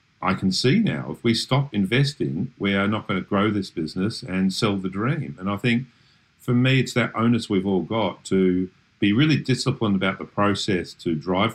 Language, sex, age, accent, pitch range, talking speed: English, male, 50-69, Australian, 90-110 Hz, 210 wpm